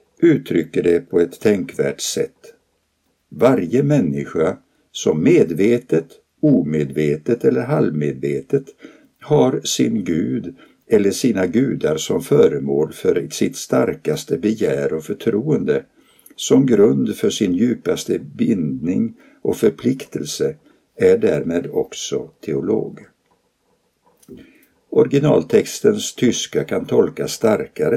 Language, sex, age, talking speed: Swedish, male, 60-79, 95 wpm